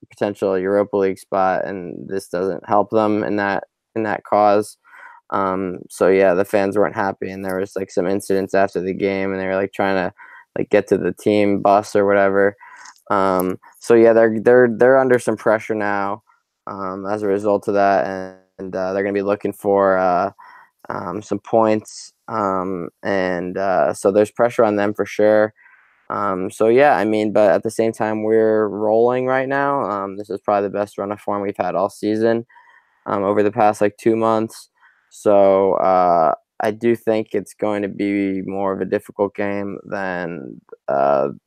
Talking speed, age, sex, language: 190 wpm, 10-29, male, English